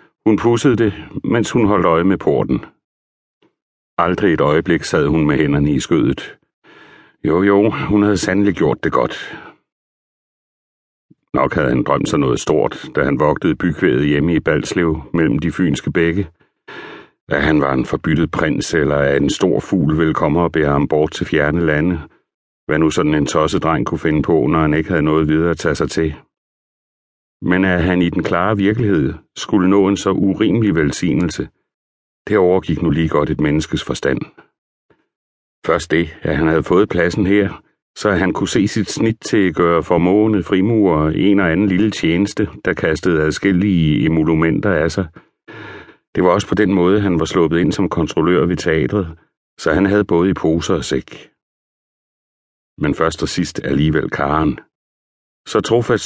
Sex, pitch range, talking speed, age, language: male, 75-95 Hz, 170 wpm, 60-79, Danish